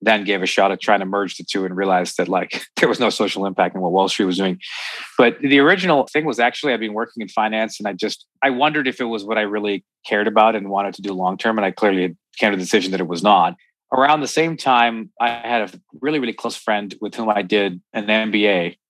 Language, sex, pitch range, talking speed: English, male, 100-120 Hz, 260 wpm